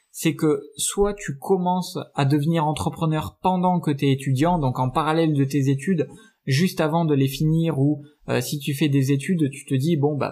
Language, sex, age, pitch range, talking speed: French, male, 20-39, 135-170 Hz, 205 wpm